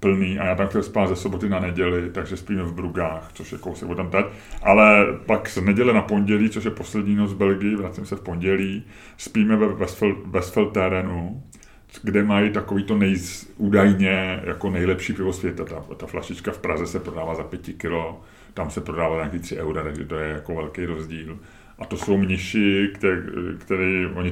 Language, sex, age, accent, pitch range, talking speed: Czech, male, 30-49, native, 85-100 Hz, 190 wpm